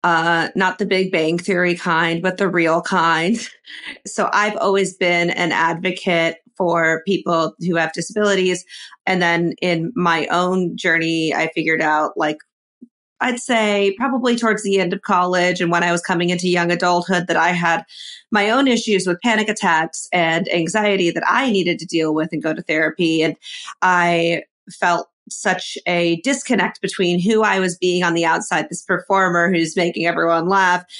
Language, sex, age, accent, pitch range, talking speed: English, female, 30-49, American, 165-195 Hz, 170 wpm